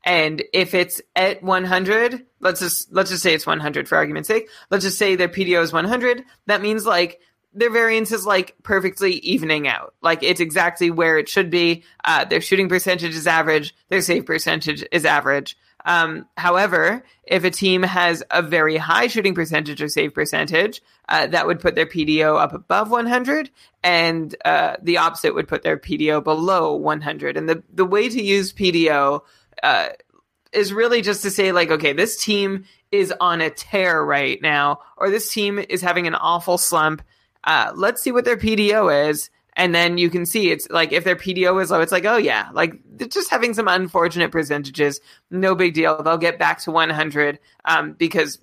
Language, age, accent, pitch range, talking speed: English, 20-39, American, 160-200 Hz, 190 wpm